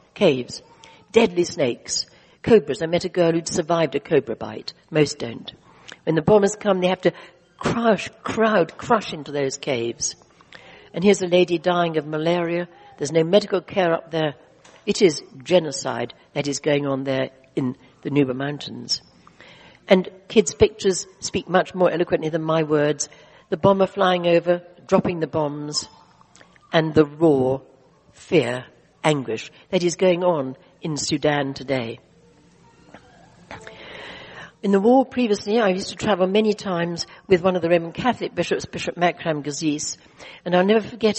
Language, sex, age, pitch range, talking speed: English, female, 60-79, 150-195 Hz, 155 wpm